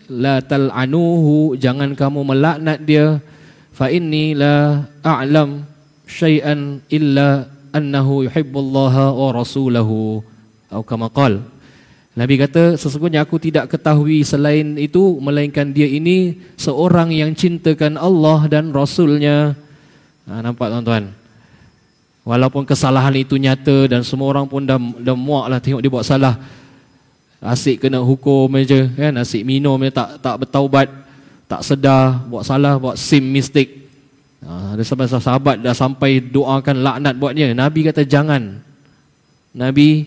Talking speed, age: 130 wpm, 20-39